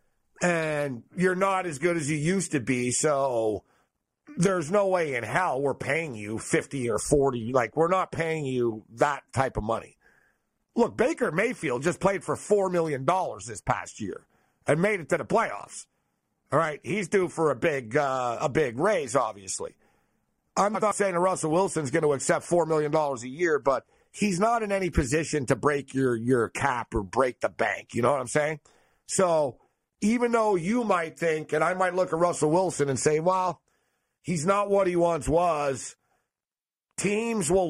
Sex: male